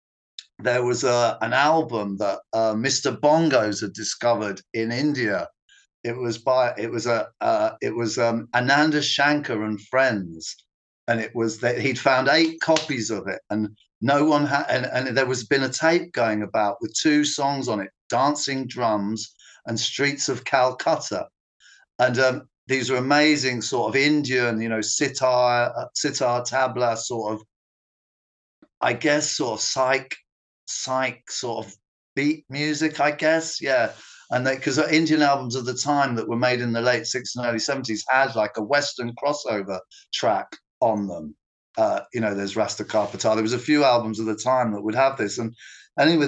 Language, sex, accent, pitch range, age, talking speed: English, male, British, 115-145 Hz, 50-69, 175 wpm